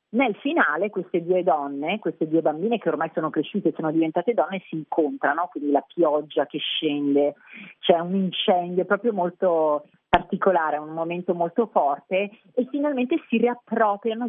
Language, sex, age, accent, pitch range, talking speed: Italian, female, 40-59, native, 155-190 Hz, 160 wpm